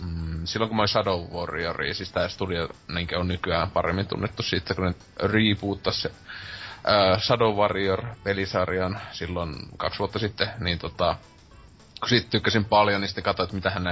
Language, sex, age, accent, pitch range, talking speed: Finnish, male, 20-39, native, 90-105 Hz, 140 wpm